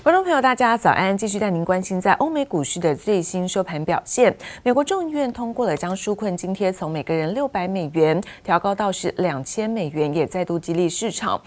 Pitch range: 170-225 Hz